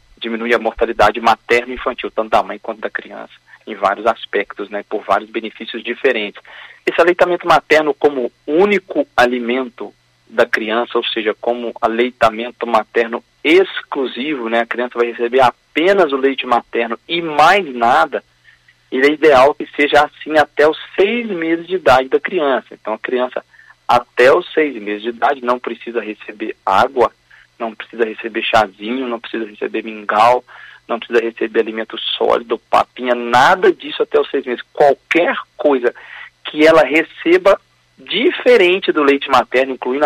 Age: 40-59